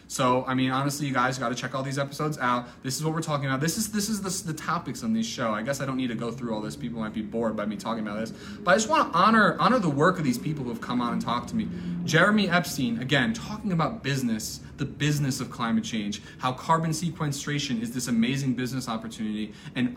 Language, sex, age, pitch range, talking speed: English, male, 20-39, 120-165 Hz, 265 wpm